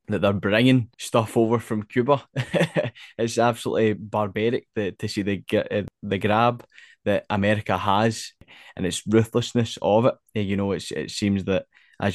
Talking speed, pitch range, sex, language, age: 165 wpm, 95-110 Hz, male, English, 10-29